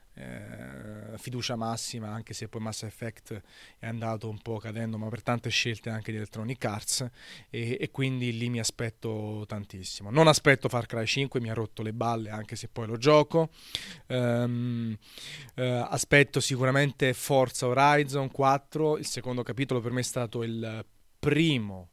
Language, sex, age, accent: Italian, male, 30-49, native